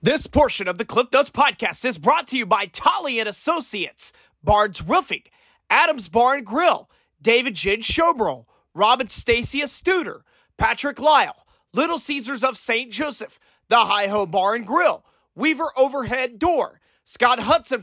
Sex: male